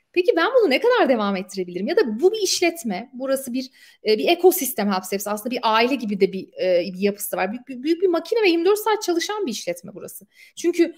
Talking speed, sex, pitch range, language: 200 wpm, female, 230-365 Hz, Turkish